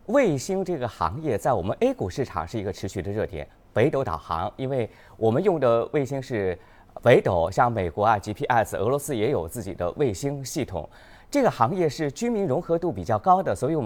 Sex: male